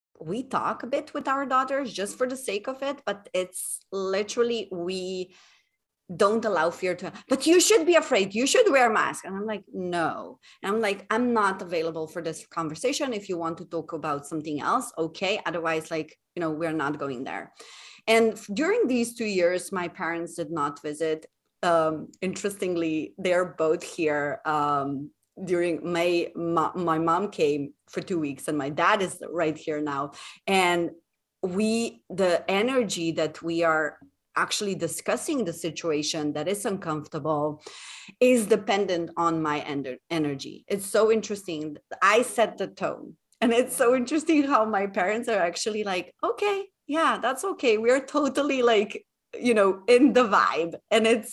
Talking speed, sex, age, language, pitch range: 165 wpm, female, 30-49, English, 165-230 Hz